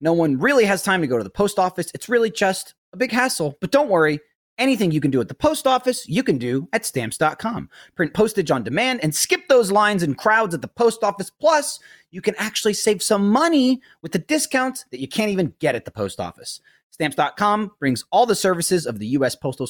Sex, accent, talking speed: male, American, 230 wpm